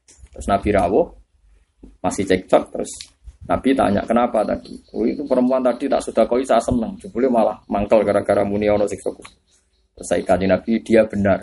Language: Indonesian